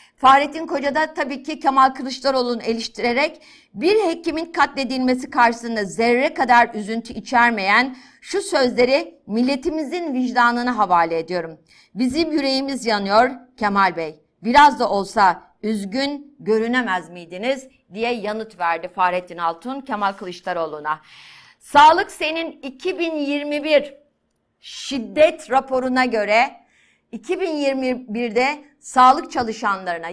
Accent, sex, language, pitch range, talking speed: native, female, Turkish, 225-285 Hz, 95 wpm